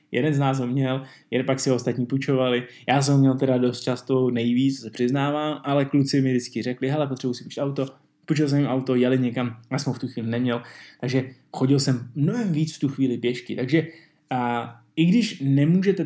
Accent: native